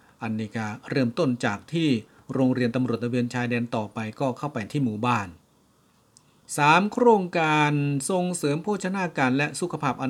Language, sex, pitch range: Thai, male, 120-145 Hz